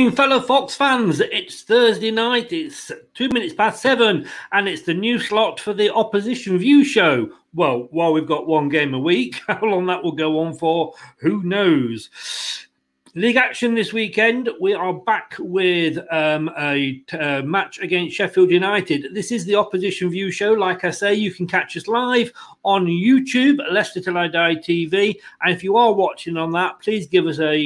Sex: male